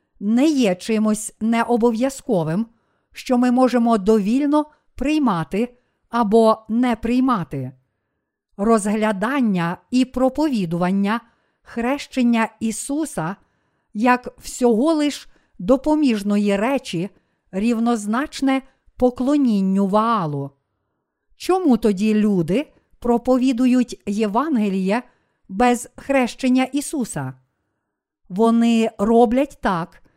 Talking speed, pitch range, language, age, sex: 70 wpm, 205-255 Hz, Ukrainian, 50-69, female